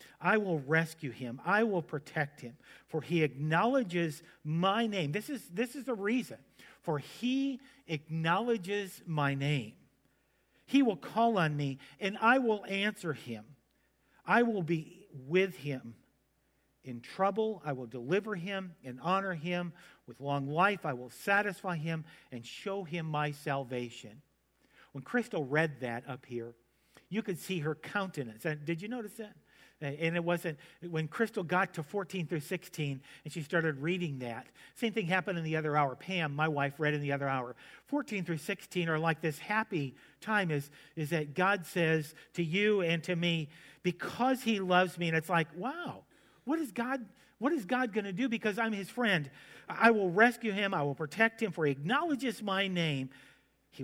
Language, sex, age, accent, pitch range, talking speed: English, male, 50-69, American, 145-205 Hz, 175 wpm